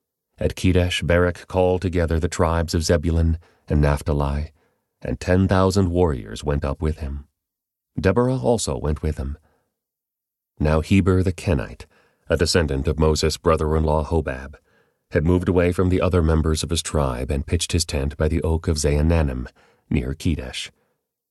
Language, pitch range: English, 75-90 Hz